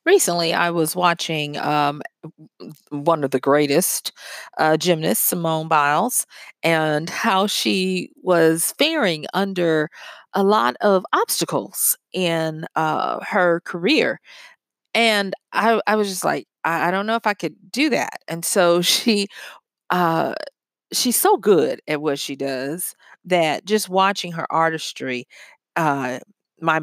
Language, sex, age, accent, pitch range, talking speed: English, female, 40-59, American, 160-210 Hz, 135 wpm